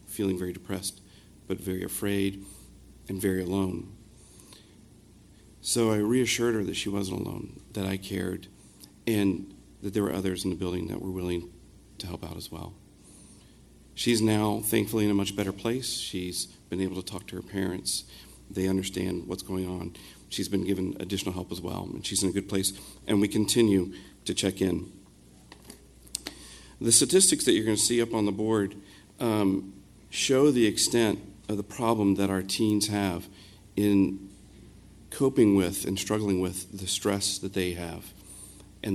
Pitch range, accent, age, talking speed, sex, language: 95-110 Hz, American, 40-59, 165 wpm, male, English